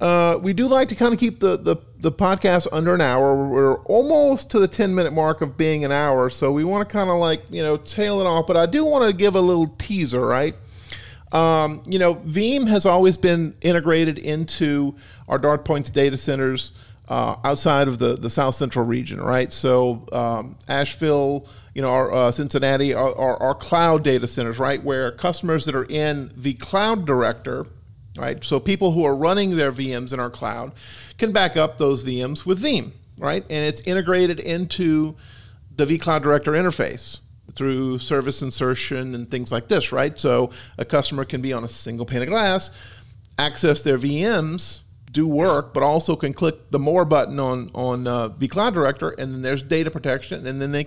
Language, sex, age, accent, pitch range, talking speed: English, male, 40-59, American, 125-165 Hz, 195 wpm